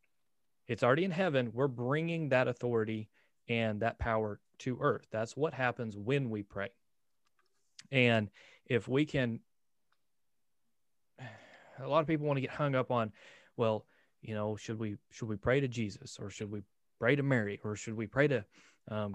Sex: male